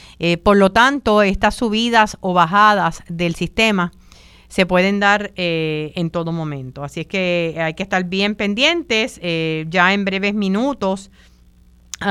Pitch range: 170-205 Hz